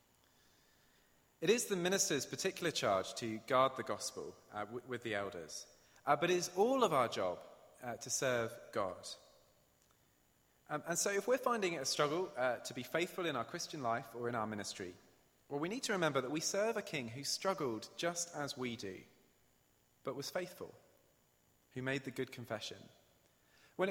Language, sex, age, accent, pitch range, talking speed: English, male, 30-49, British, 110-165 Hz, 180 wpm